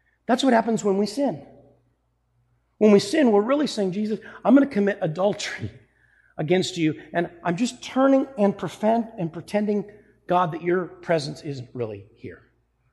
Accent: American